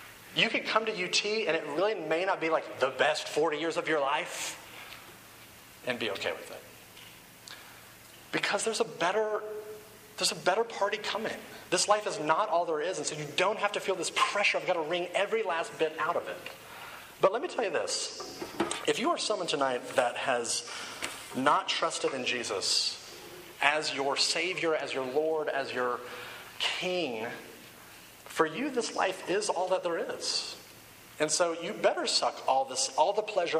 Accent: American